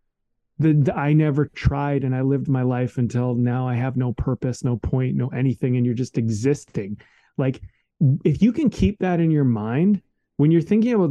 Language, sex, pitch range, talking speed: English, male, 125-160 Hz, 190 wpm